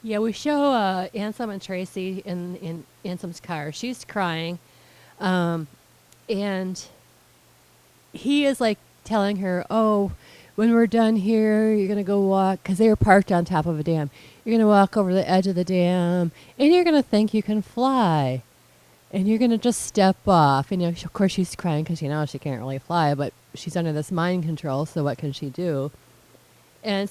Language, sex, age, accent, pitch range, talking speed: English, female, 30-49, American, 160-215 Hz, 190 wpm